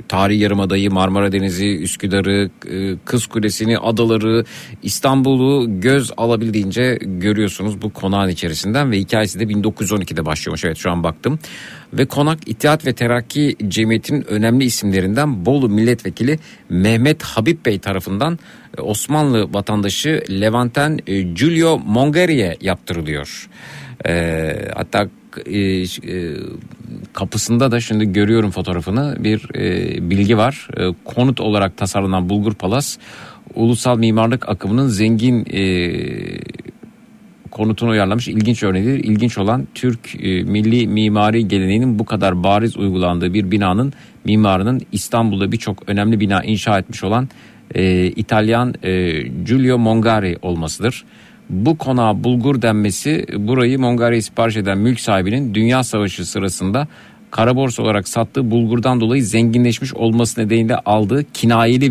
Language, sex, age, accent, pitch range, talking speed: Turkish, male, 50-69, native, 100-125 Hz, 120 wpm